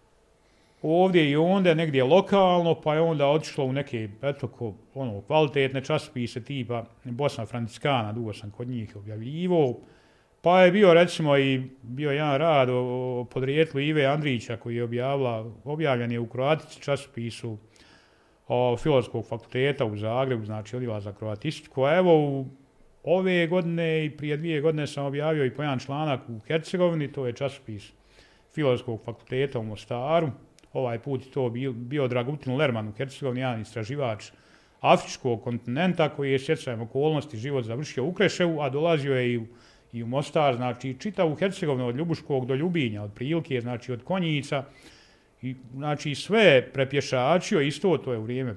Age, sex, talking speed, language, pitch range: 40-59, male, 150 wpm, Croatian, 120-155 Hz